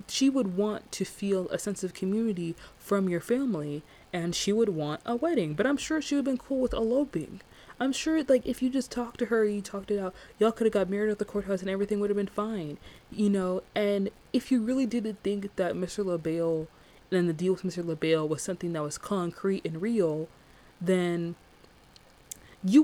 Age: 20-39